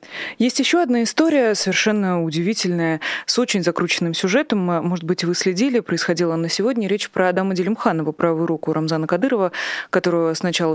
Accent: native